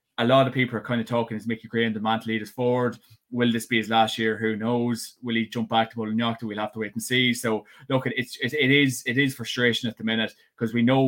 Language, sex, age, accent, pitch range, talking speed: English, male, 20-39, Irish, 110-125 Hz, 290 wpm